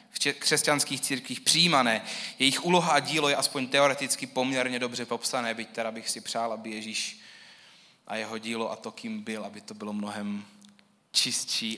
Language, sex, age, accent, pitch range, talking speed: Czech, male, 20-39, native, 110-140 Hz, 170 wpm